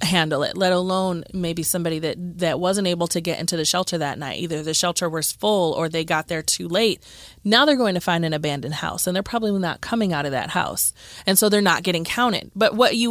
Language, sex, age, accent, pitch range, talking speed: English, female, 30-49, American, 165-195 Hz, 245 wpm